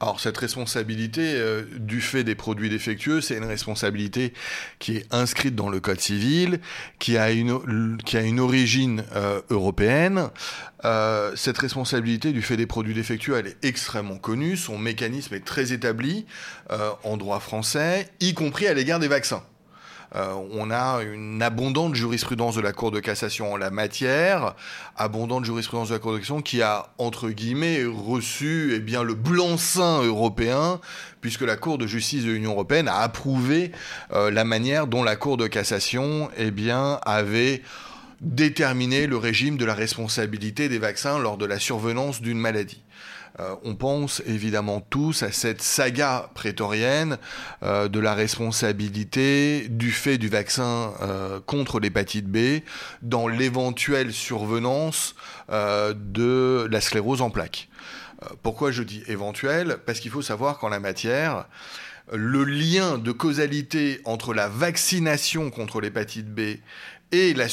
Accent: French